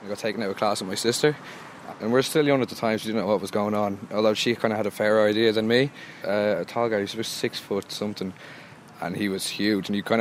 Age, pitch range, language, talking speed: 20-39, 105-115 Hz, English, 300 wpm